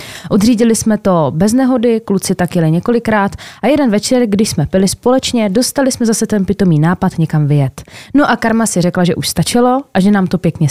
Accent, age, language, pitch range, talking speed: native, 20-39, Czech, 165-210 Hz, 205 wpm